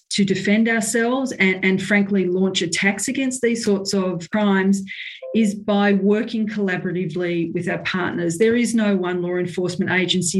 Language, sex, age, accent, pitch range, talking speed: English, female, 40-59, Australian, 180-210 Hz, 155 wpm